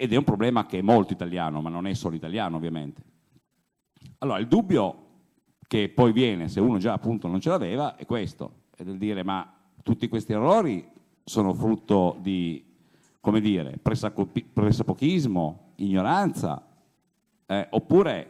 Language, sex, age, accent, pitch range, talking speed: Italian, male, 50-69, native, 95-130 Hz, 150 wpm